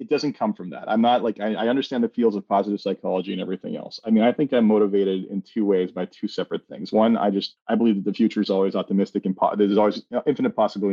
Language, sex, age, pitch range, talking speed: English, male, 30-49, 100-135 Hz, 265 wpm